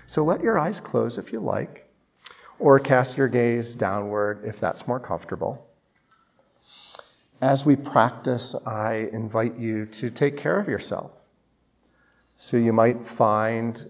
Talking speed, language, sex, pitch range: 140 wpm, English, male, 105-120 Hz